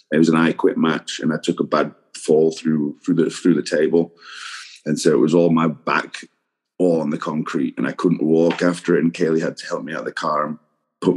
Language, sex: English, male